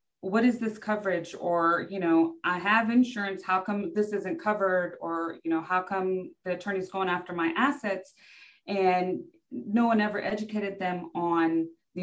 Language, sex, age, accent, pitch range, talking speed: English, female, 20-39, American, 155-185 Hz, 170 wpm